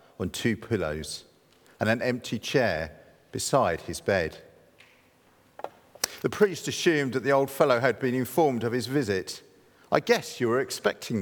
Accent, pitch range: British, 100-150 Hz